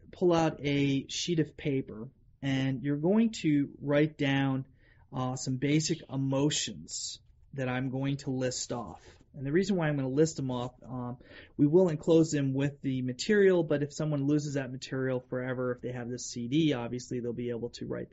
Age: 30-49